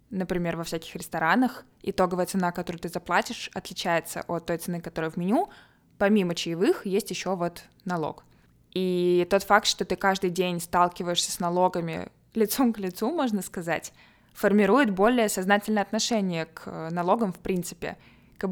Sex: female